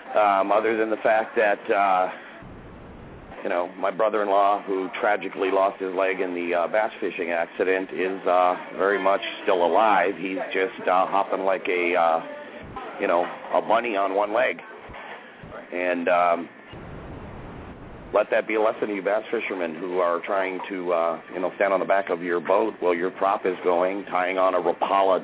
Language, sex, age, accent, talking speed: English, male, 40-59, American, 180 wpm